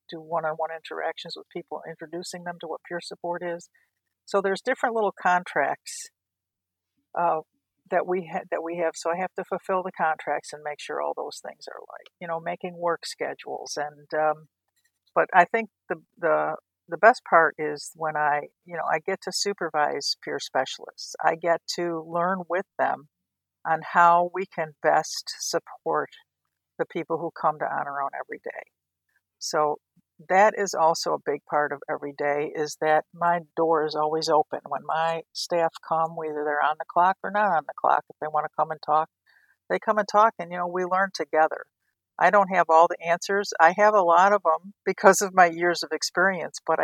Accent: American